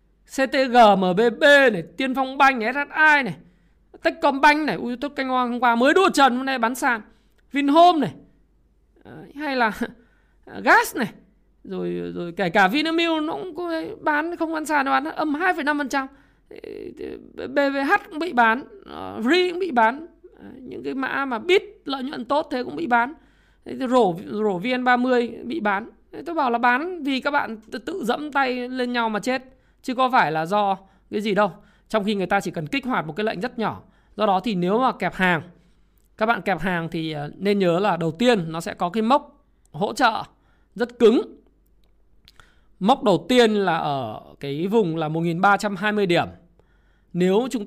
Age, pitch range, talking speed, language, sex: 20-39, 190-280 Hz, 180 wpm, Vietnamese, male